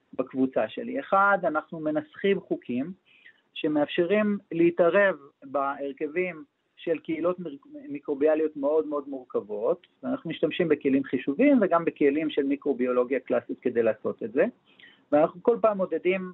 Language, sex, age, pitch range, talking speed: Hebrew, male, 40-59, 150-200 Hz, 120 wpm